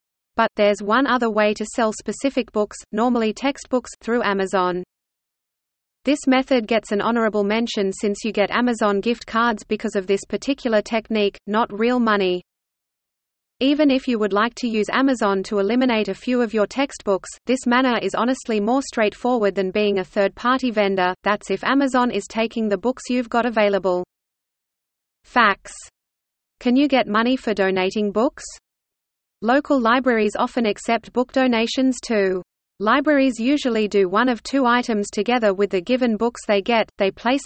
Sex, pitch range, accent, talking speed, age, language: female, 205-250 Hz, Australian, 160 wpm, 30-49, English